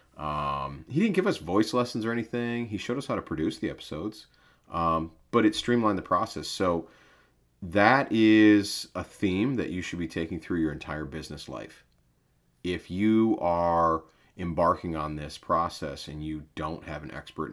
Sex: male